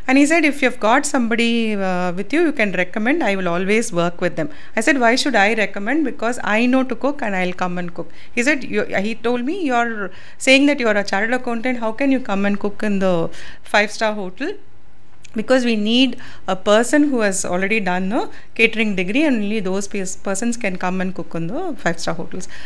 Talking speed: 225 wpm